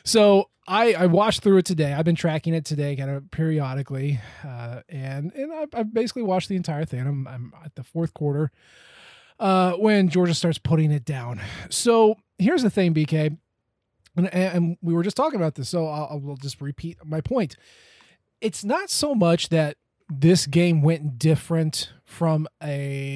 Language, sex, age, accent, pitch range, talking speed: English, male, 20-39, American, 145-185 Hz, 180 wpm